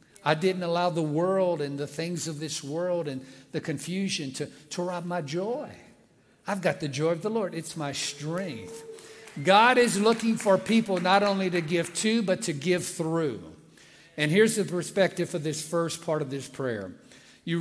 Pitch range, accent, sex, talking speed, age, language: 160-235 Hz, American, male, 185 wpm, 50-69, English